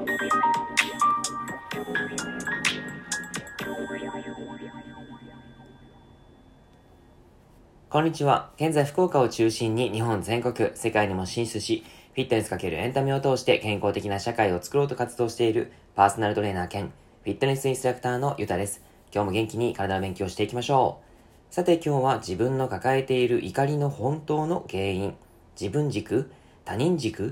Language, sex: Japanese, male